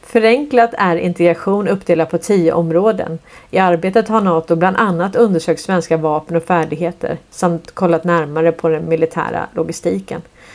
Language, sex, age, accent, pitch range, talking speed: Swedish, female, 30-49, native, 175-235 Hz, 140 wpm